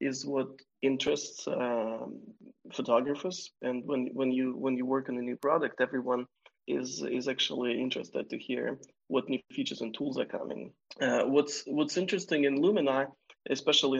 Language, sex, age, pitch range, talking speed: English, male, 20-39, 125-145 Hz, 160 wpm